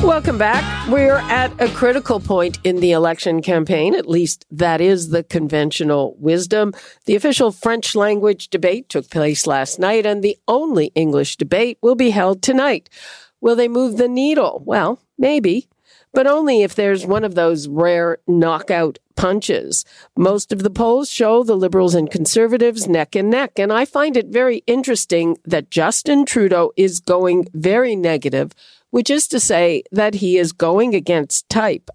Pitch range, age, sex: 170-225 Hz, 50-69, female